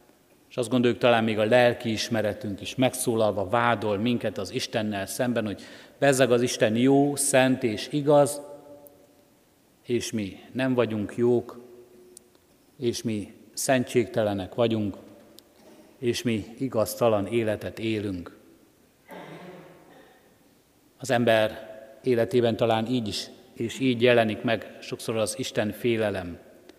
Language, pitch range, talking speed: Hungarian, 110-130 Hz, 110 wpm